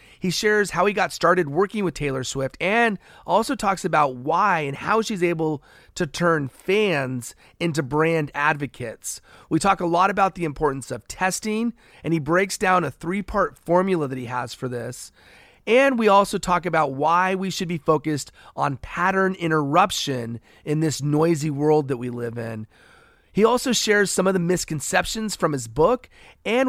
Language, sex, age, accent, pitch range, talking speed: English, male, 30-49, American, 145-195 Hz, 175 wpm